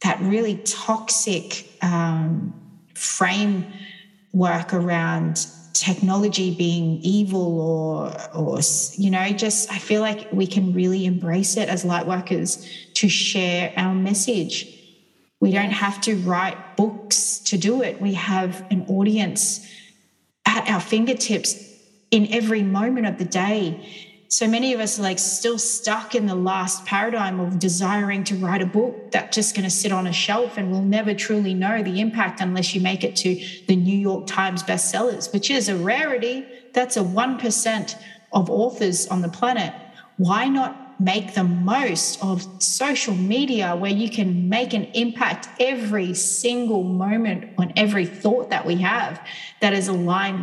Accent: Australian